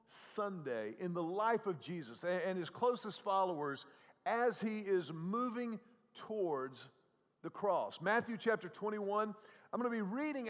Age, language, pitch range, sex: 50-69, English, 170-215 Hz, male